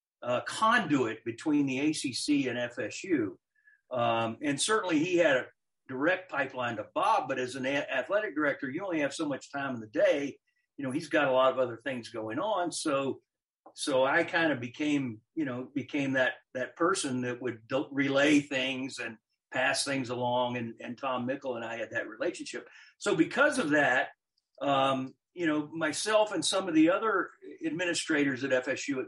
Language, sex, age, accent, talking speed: English, male, 50-69, American, 185 wpm